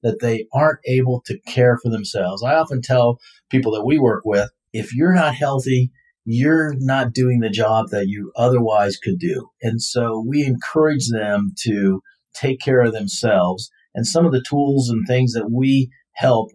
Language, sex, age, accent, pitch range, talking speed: English, male, 40-59, American, 110-135 Hz, 180 wpm